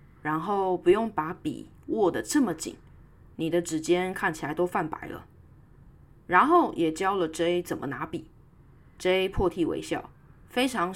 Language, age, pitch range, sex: Chinese, 20-39, 165-245 Hz, female